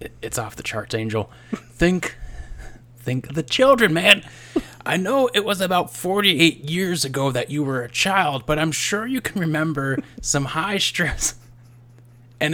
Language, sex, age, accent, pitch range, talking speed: English, male, 30-49, American, 120-190 Hz, 165 wpm